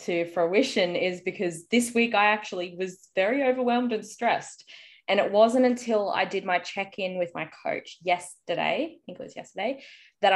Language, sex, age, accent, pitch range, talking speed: English, female, 20-39, Australian, 175-215 Hz, 180 wpm